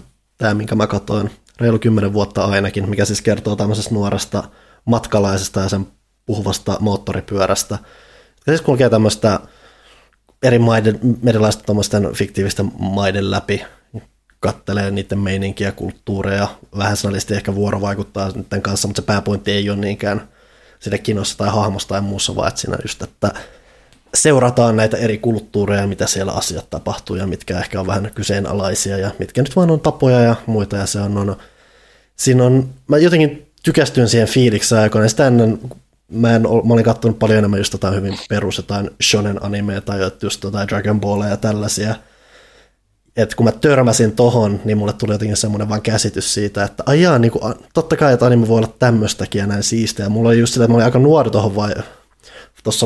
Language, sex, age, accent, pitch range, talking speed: Finnish, male, 20-39, native, 100-115 Hz, 165 wpm